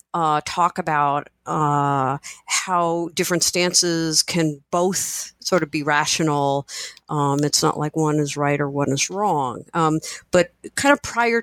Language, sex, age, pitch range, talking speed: English, female, 50-69, 150-195 Hz, 150 wpm